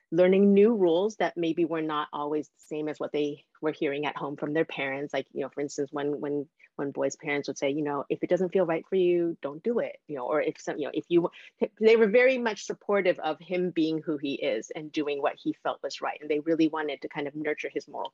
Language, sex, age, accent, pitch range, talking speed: English, female, 30-49, American, 155-220 Hz, 270 wpm